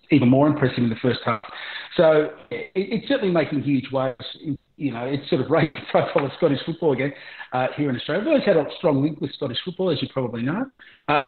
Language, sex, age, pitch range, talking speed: English, male, 40-59, 125-145 Hz, 235 wpm